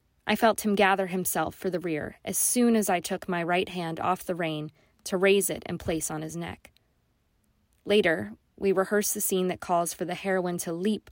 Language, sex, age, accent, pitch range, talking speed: English, female, 20-39, American, 170-205 Hz, 210 wpm